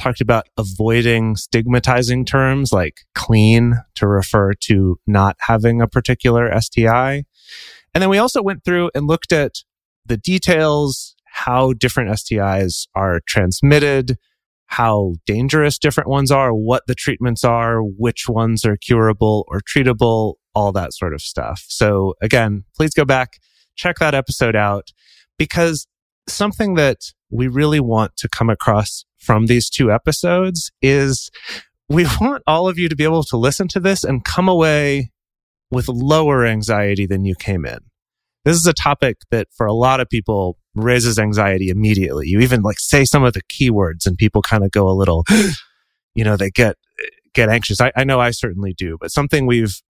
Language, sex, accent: English, male, American